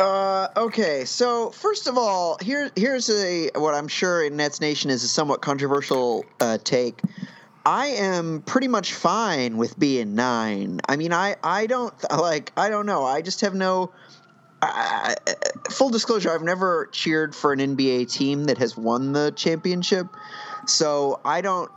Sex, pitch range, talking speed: male, 130-195 Hz, 170 wpm